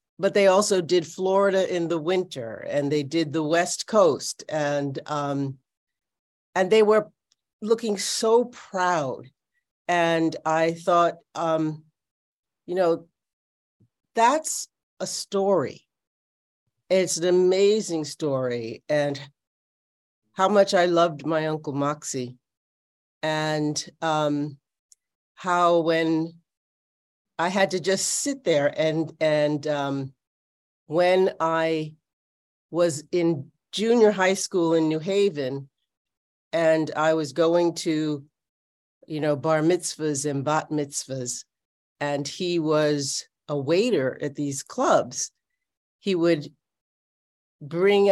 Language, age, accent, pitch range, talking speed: English, 50-69, American, 145-180 Hz, 110 wpm